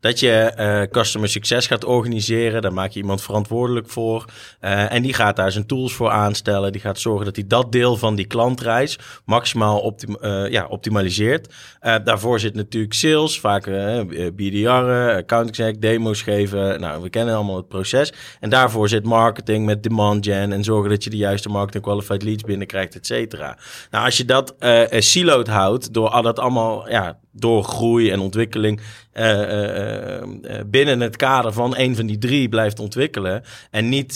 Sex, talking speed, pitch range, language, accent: male, 175 wpm, 105-125 Hz, Dutch, Dutch